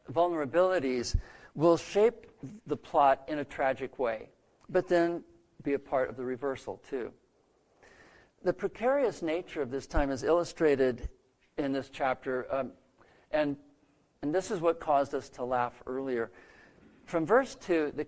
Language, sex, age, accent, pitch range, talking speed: English, male, 50-69, American, 130-165 Hz, 145 wpm